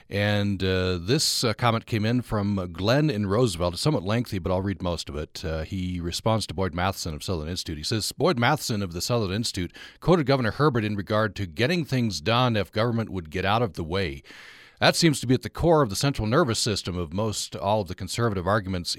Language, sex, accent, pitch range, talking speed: English, male, American, 95-125 Hz, 230 wpm